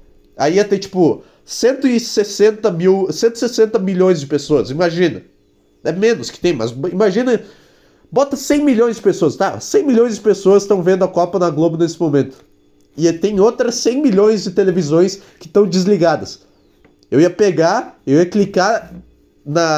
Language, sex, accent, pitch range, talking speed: Portuguese, male, Brazilian, 170-220 Hz, 155 wpm